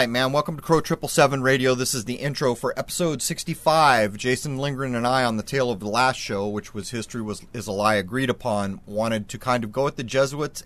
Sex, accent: male, American